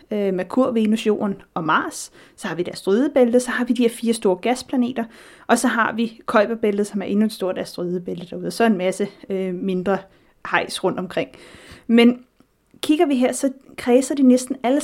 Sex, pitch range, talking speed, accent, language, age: female, 190-245 Hz, 200 wpm, native, Danish, 30-49